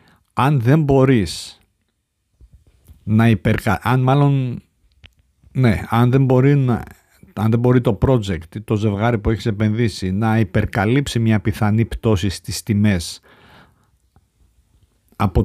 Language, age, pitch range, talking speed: Greek, 50-69, 95-115 Hz, 125 wpm